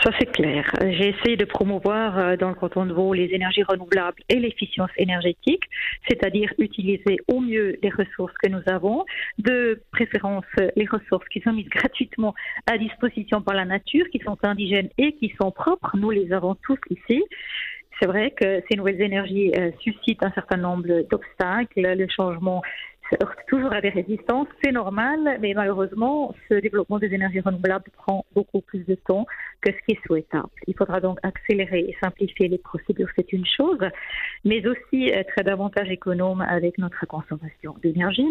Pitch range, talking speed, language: 185-220 Hz, 170 wpm, French